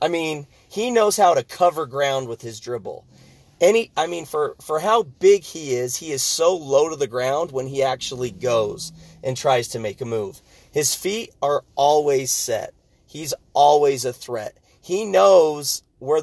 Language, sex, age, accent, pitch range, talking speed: English, male, 30-49, American, 130-165 Hz, 180 wpm